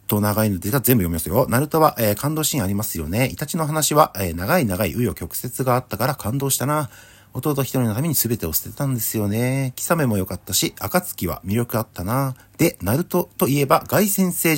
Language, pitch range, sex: Japanese, 100-140 Hz, male